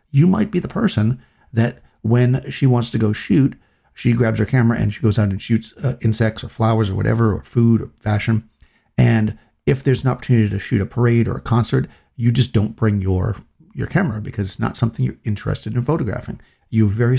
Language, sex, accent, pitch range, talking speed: English, male, American, 105-125 Hz, 215 wpm